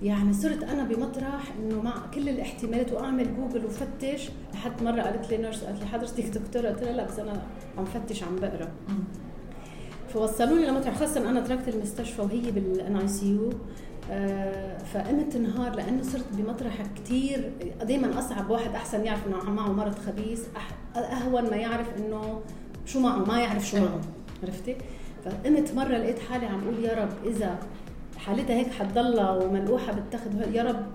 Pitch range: 205-245 Hz